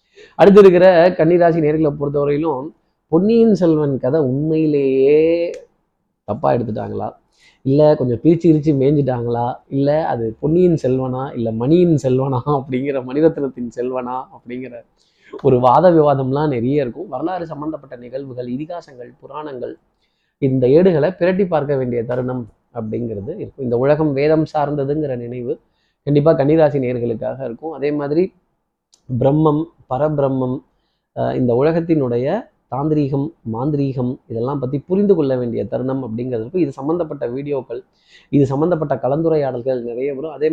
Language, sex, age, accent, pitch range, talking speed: Tamil, male, 20-39, native, 125-160 Hz, 115 wpm